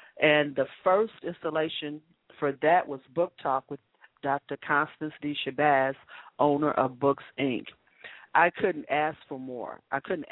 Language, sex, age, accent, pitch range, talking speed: English, female, 40-59, American, 135-155 Hz, 145 wpm